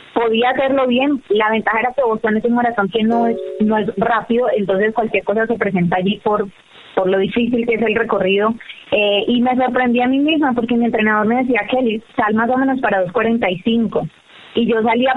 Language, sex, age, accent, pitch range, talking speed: Spanish, female, 20-39, Colombian, 205-240 Hz, 210 wpm